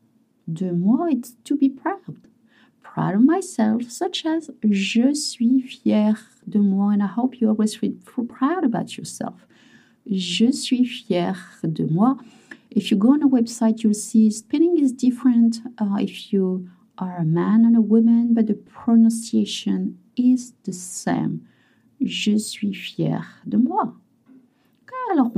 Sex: female